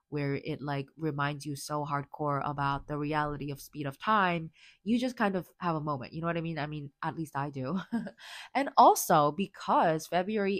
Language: English